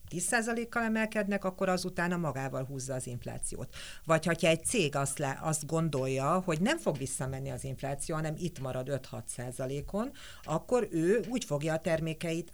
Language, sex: Hungarian, female